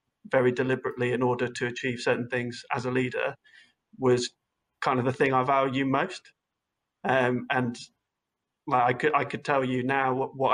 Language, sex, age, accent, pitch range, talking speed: English, male, 30-49, British, 125-135 Hz, 170 wpm